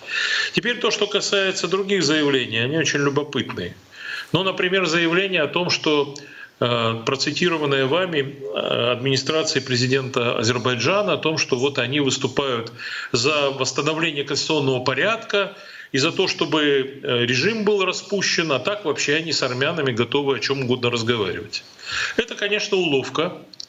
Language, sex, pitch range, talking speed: Russian, male, 140-185 Hz, 130 wpm